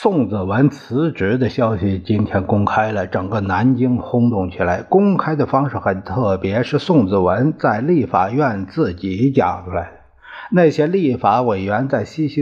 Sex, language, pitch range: male, Chinese, 105-145 Hz